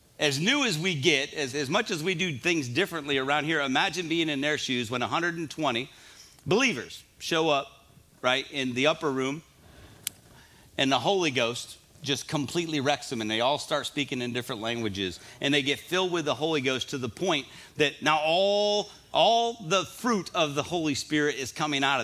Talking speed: 190 wpm